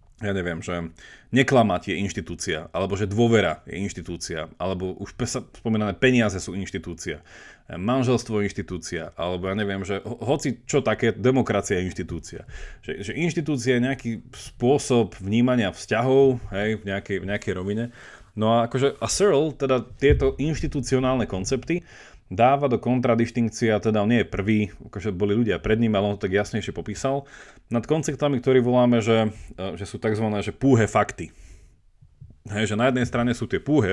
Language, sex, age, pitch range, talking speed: Slovak, male, 30-49, 100-130 Hz, 165 wpm